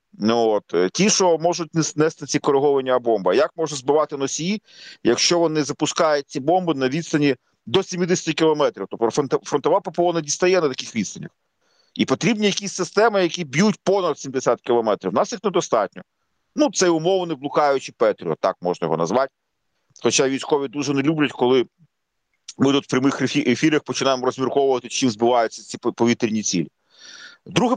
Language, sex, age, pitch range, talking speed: Ukrainian, male, 40-59, 130-180 Hz, 155 wpm